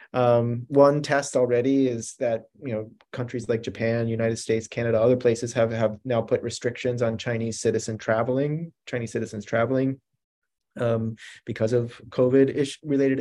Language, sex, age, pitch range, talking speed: English, male, 30-49, 110-130 Hz, 145 wpm